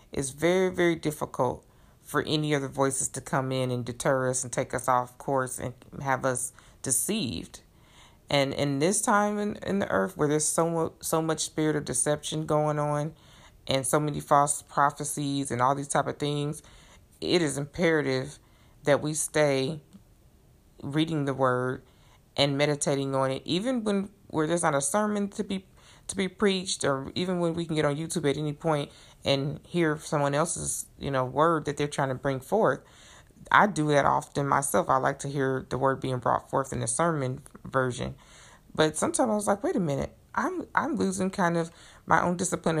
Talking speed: 190 wpm